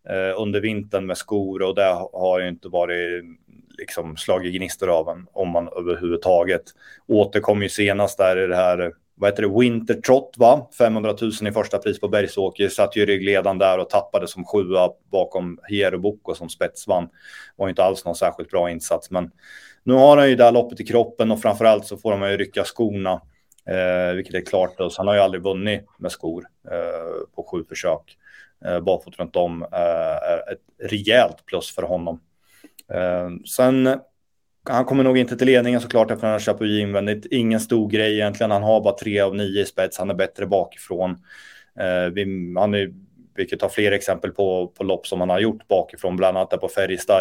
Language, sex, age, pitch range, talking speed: Swedish, male, 30-49, 90-110 Hz, 190 wpm